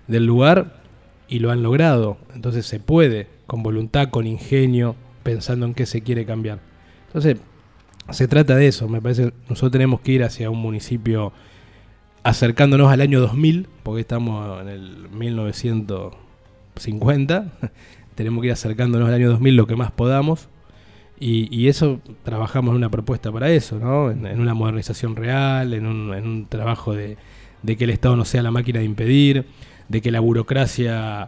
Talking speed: 170 wpm